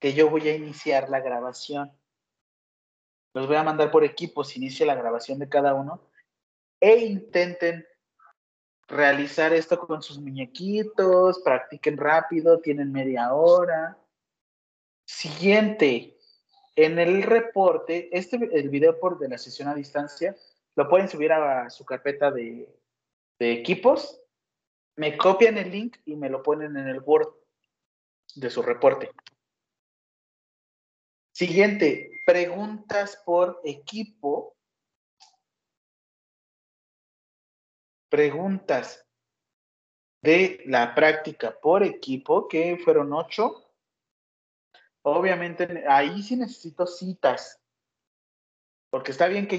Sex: male